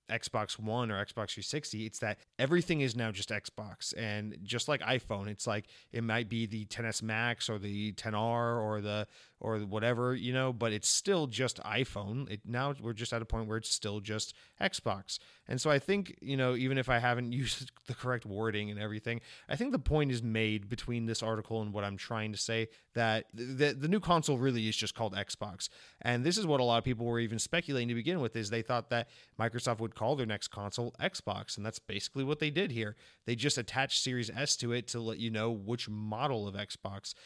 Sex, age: male, 30-49